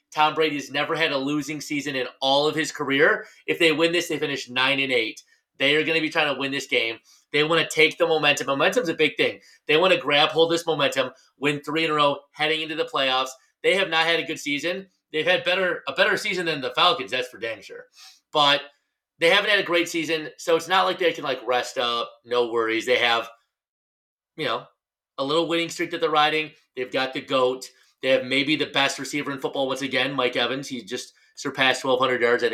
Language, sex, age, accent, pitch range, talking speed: English, male, 30-49, American, 130-160 Hz, 235 wpm